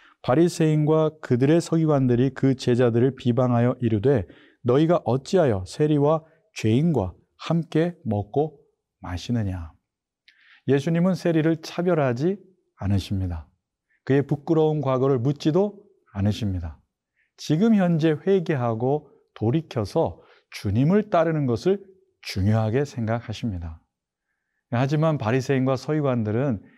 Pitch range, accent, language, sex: 110-160 Hz, native, Korean, male